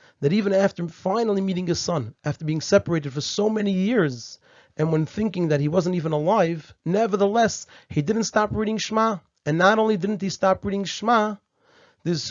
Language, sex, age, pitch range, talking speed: English, male, 30-49, 155-205 Hz, 180 wpm